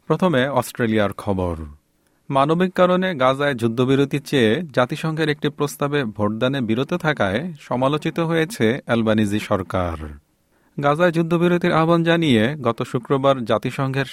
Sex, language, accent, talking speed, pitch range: male, Bengali, native, 105 wpm, 105-150 Hz